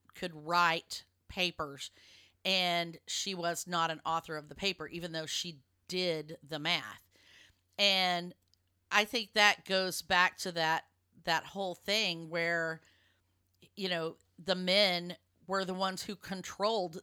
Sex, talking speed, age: female, 135 wpm, 40-59